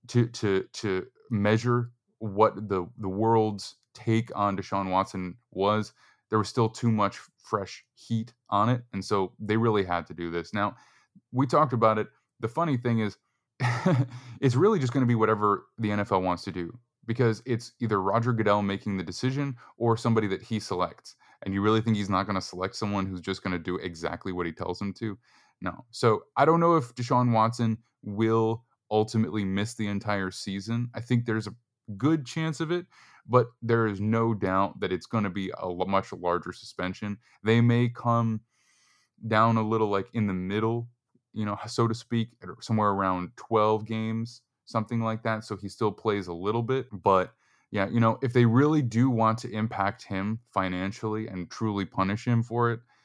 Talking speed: 190 wpm